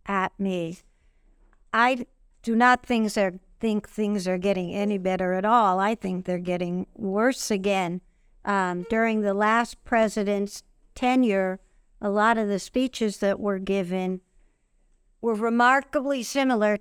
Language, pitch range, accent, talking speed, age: English, 185-225 Hz, American, 130 wpm, 60-79